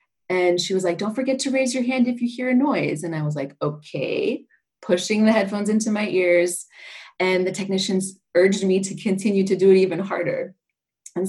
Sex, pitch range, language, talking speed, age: female, 170-205 Hz, English, 205 wpm, 30-49